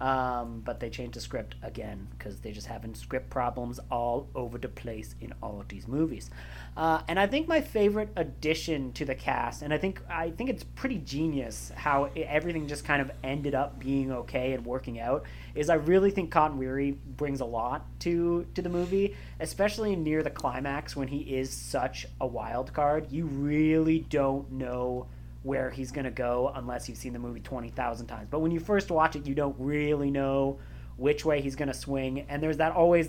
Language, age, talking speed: English, 30-49, 200 wpm